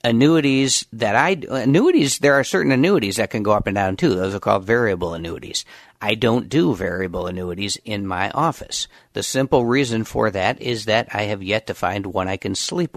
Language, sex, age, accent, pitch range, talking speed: English, male, 50-69, American, 95-115 Hz, 210 wpm